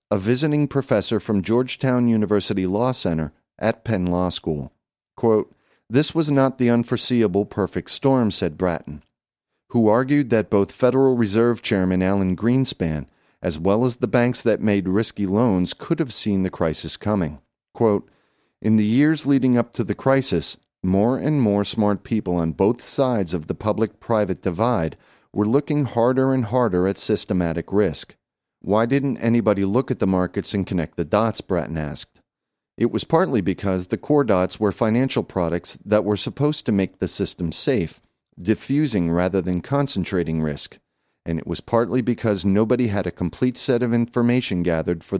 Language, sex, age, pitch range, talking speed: English, male, 40-59, 90-120 Hz, 165 wpm